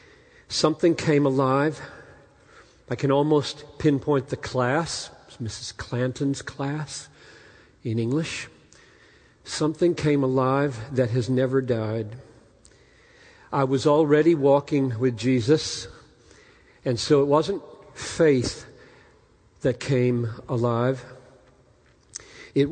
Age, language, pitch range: 50-69, English, 120-145 Hz